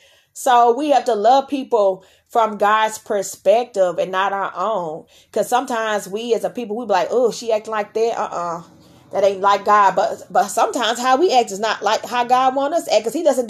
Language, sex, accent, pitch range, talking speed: English, female, American, 210-280 Hz, 230 wpm